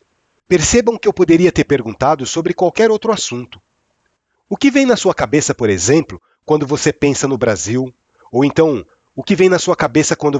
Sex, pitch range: male, 130-185 Hz